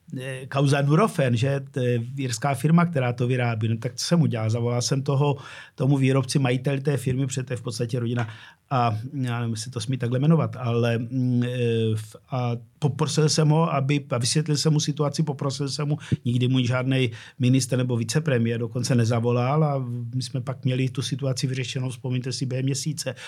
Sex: male